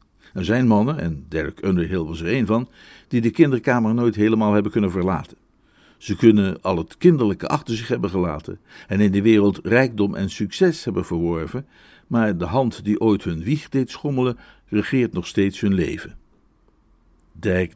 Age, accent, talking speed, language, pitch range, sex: 60-79, Dutch, 170 wpm, Dutch, 95-125 Hz, male